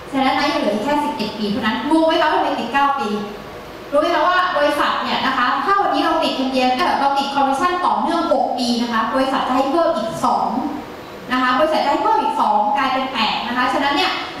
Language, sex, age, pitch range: Thai, female, 20-39, 265-330 Hz